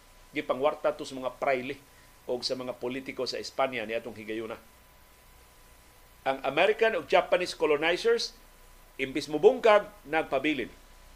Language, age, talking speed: Filipino, 50-69, 120 wpm